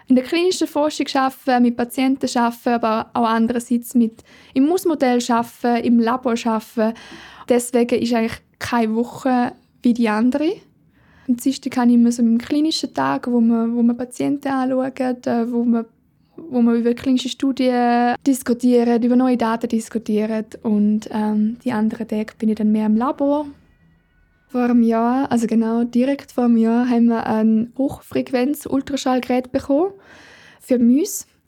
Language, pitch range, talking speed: German, 235-275 Hz, 150 wpm